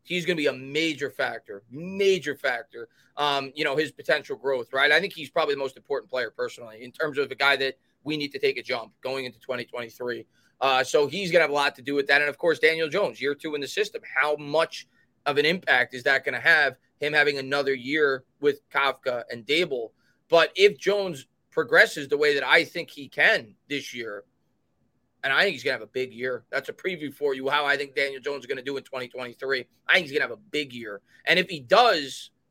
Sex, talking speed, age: male, 245 wpm, 20-39